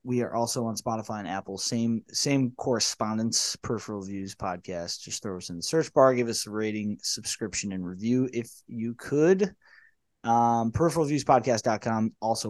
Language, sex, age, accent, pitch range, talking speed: English, male, 20-39, American, 115-150 Hz, 160 wpm